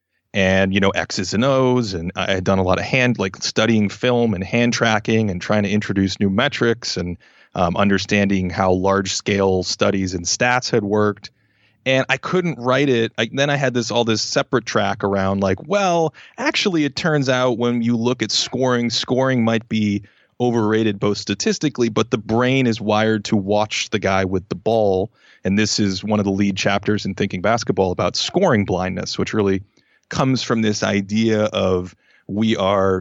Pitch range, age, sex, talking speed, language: 100-120 Hz, 30-49, male, 185 wpm, English